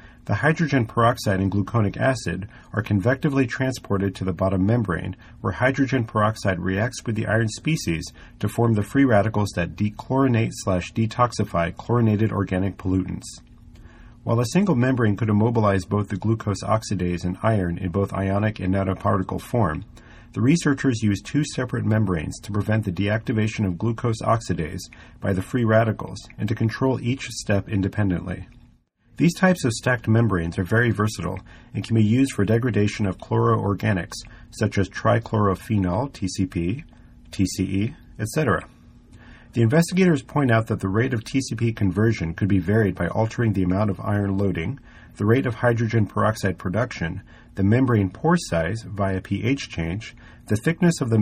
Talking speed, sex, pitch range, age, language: 155 wpm, male, 95-120 Hz, 40-59, English